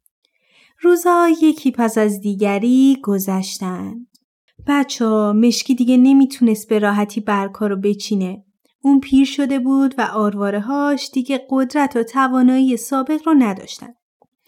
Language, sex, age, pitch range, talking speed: Persian, female, 30-49, 210-275 Hz, 115 wpm